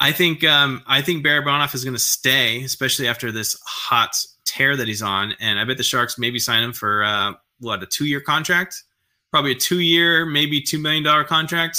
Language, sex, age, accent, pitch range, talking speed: English, male, 20-39, American, 110-140 Hz, 200 wpm